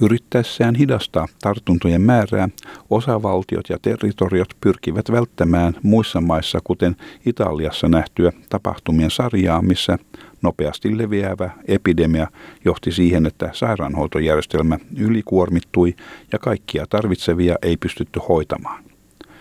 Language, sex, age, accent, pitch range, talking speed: Finnish, male, 50-69, native, 85-105 Hz, 95 wpm